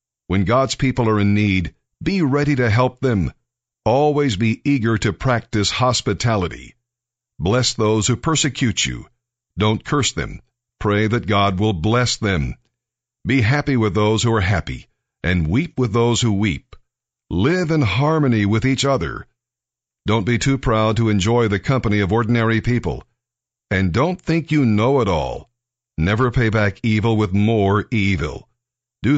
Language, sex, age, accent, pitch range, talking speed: English, male, 50-69, American, 100-125 Hz, 155 wpm